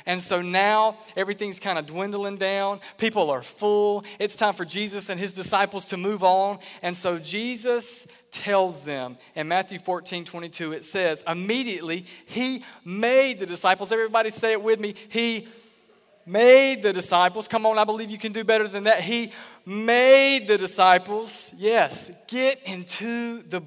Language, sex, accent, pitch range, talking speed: English, male, American, 180-225 Hz, 160 wpm